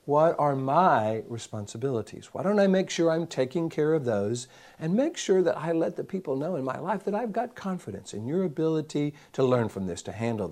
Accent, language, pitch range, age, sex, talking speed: American, English, 115-170 Hz, 60-79, male, 220 wpm